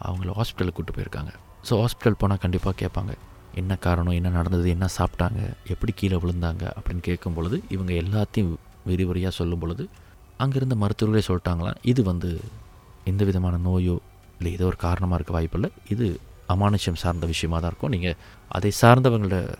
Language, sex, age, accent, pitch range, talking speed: Tamil, male, 30-49, native, 90-105 Hz, 150 wpm